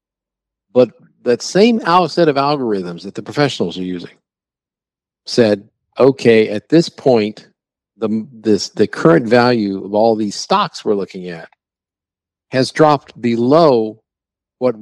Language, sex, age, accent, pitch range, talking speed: English, male, 50-69, American, 105-135 Hz, 130 wpm